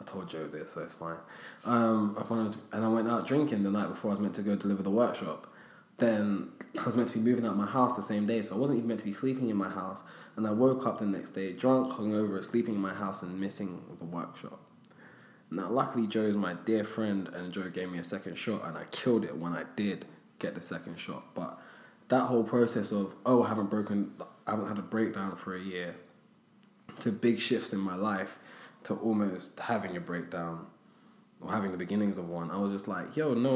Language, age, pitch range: English, 20-39, 95-115 Hz